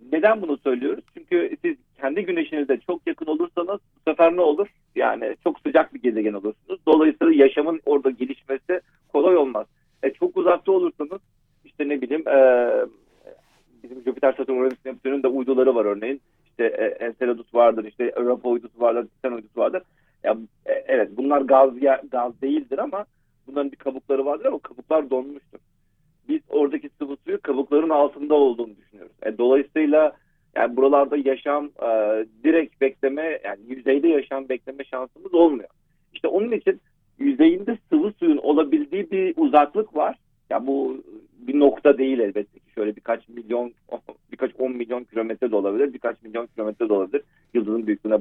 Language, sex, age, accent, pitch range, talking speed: Turkish, male, 40-59, native, 125-190 Hz, 150 wpm